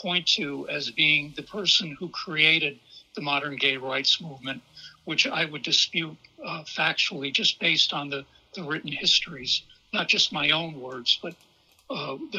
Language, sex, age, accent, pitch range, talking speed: English, male, 60-79, American, 140-185 Hz, 165 wpm